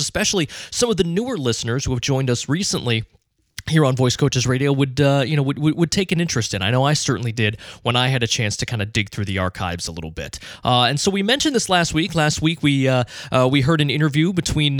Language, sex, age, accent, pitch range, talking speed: English, male, 20-39, American, 110-140 Hz, 260 wpm